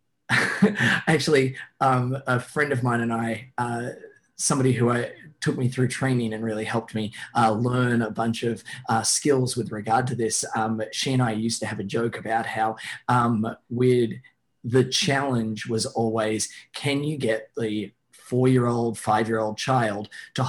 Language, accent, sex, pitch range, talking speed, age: English, Australian, male, 110-135 Hz, 165 wpm, 20-39